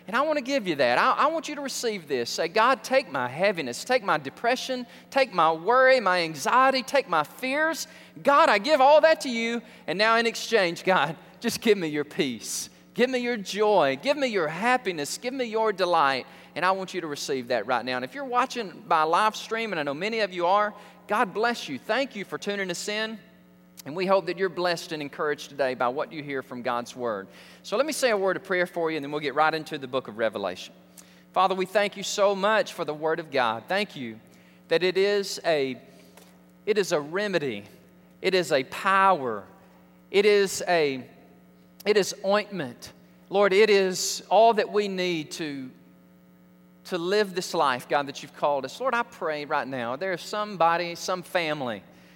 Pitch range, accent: 140-220 Hz, American